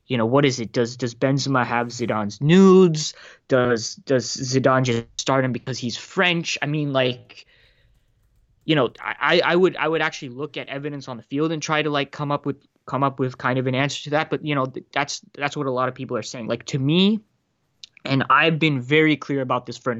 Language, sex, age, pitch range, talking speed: English, male, 20-39, 125-150 Hz, 230 wpm